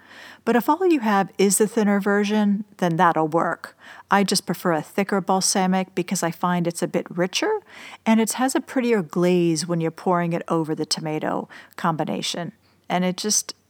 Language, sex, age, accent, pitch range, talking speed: English, female, 40-59, American, 180-220 Hz, 185 wpm